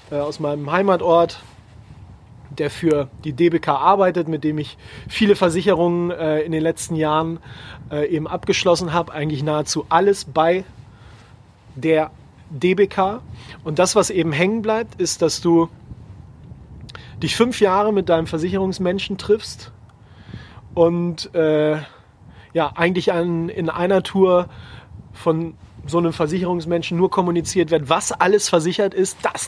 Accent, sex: German, male